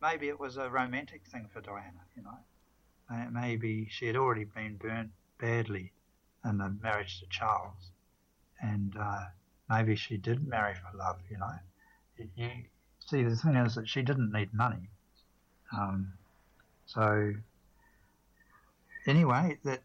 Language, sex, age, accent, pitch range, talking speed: English, male, 60-79, Australian, 105-120 Hz, 140 wpm